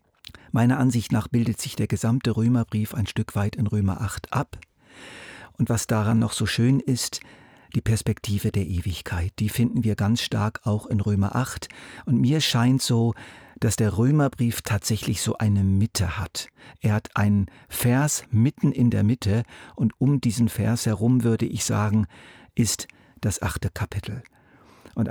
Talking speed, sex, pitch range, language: 160 wpm, male, 100-120 Hz, German